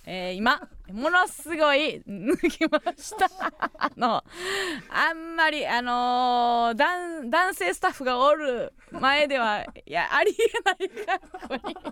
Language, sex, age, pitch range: Japanese, female, 20-39, 245-345 Hz